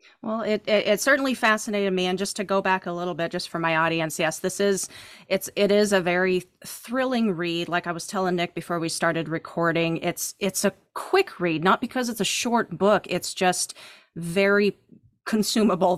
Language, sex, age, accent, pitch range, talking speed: English, female, 30-49, American, 160-190 Hz, 200 wpm